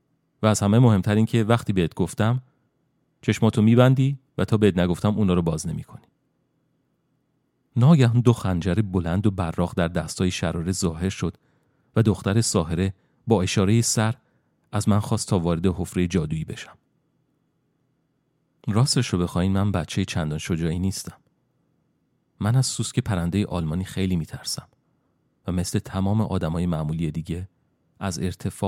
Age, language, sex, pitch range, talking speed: 40-59, Persian, male, 85-115 Hz, 140 wpm